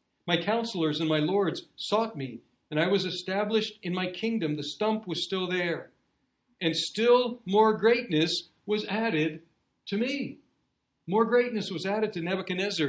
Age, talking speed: 60-79, 155 wpm